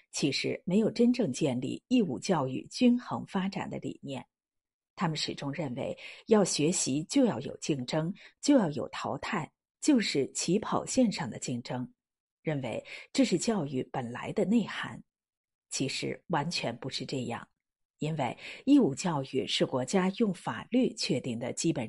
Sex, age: female, 50-69